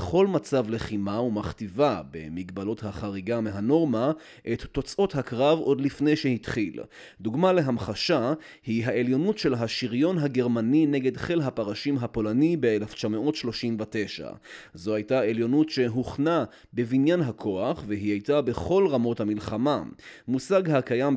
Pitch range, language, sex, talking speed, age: 110-150 Hz, Hebrew, male, 110 wpm, 30-49